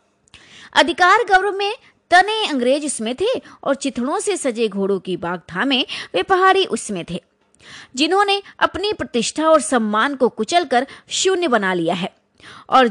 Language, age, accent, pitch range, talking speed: Hindi, 20-39, native, 230-355 Hz, 145 wpm